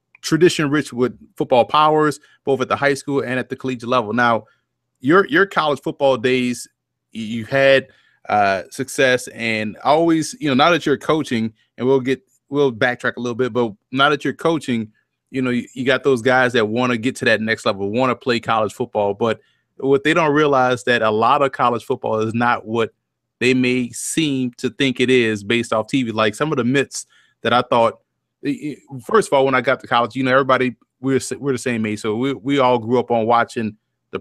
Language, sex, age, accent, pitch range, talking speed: English, male, 30-49, American, 115-140 Hz, 220 wpm